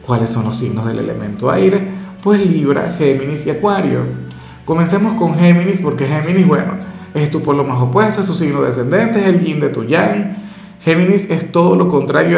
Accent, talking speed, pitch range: Venezuelan, 185 wpm, 130-170 Hz